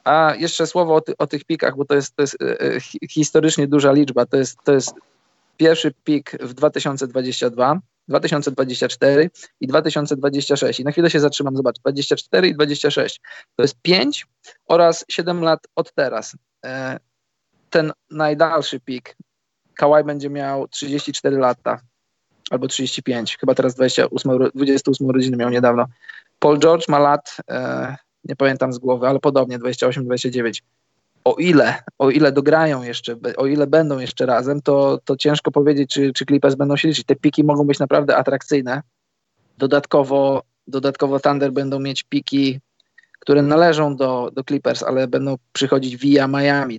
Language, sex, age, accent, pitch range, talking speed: Polish, male, 20-39, native, 135-150 Hz, 150 wpm